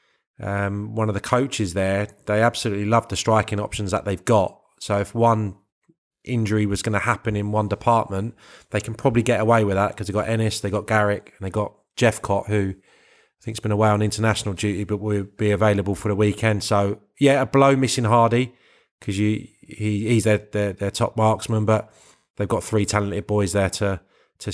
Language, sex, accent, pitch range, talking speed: English, male, British, 100-115 Hz, 205 wpm